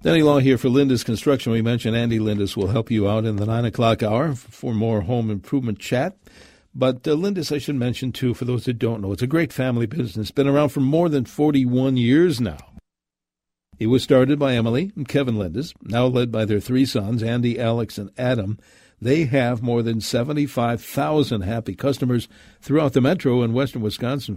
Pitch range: 110-135 Hz